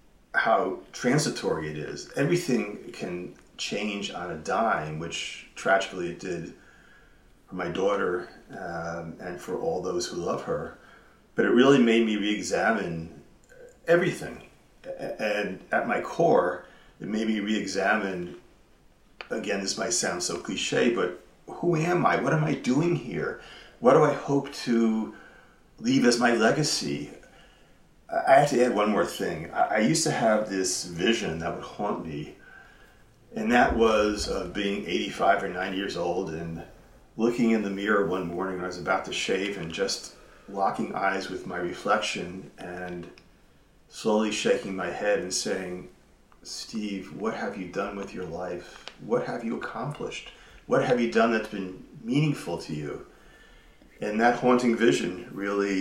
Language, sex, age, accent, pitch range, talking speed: English, male, 40-59, American, 90-120 Hz, 155 wpm